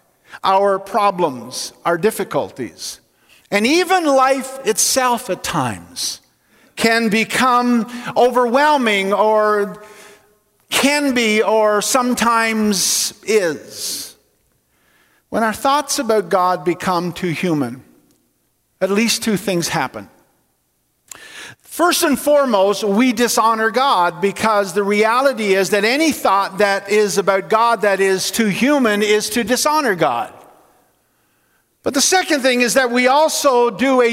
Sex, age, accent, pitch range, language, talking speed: male, 50-69, American, 200-255 Hz, English, 120 wpm